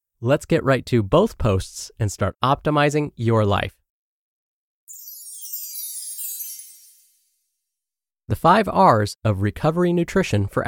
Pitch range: 100-165 Hz